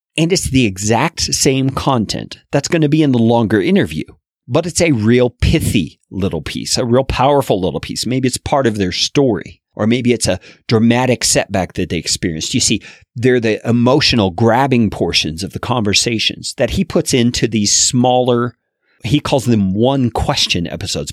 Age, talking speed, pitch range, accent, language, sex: 40-59, 180 wpm, 95-130 Hz, American, English, male